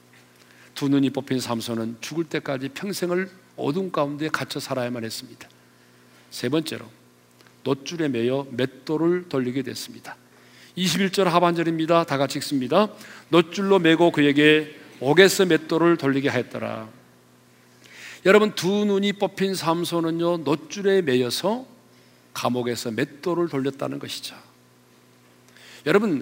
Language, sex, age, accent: Korean, male, 40-59, native